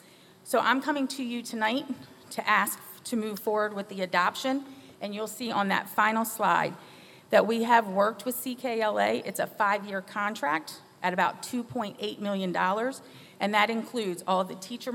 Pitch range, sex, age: 190-230 Hz, female, 40-59